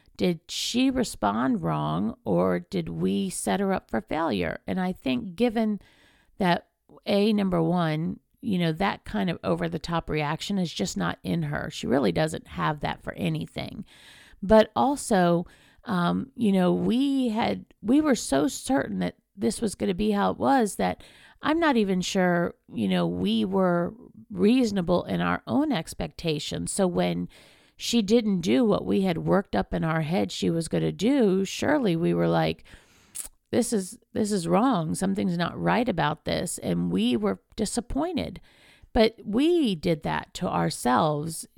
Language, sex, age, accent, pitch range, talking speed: English, female, 50-69, American, 160-215 Hz, 170 wpm